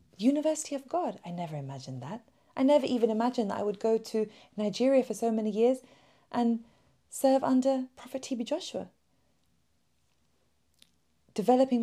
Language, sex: English, female